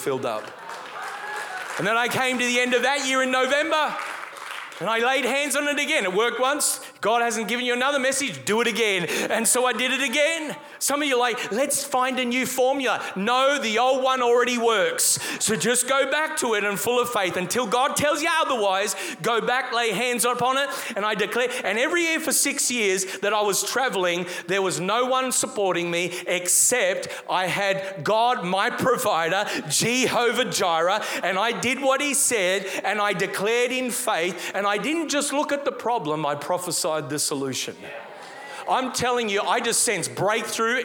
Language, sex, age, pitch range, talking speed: English, male, 30-49, 190-265 Hz, 195 wpm